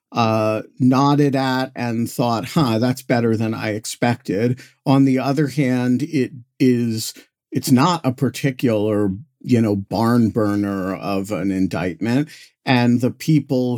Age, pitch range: 50-69, 110-140 Hz